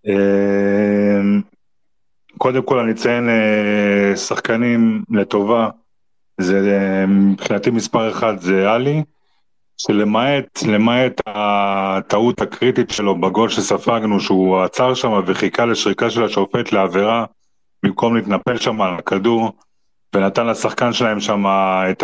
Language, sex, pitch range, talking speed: Hebrew, male, 95-120 Hz, 100 wpm